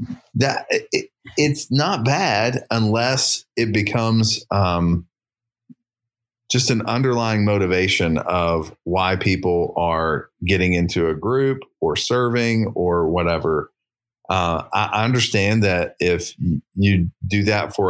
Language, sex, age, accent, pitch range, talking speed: English, male, 30-49, American, 90-115 Hz, 115 wpm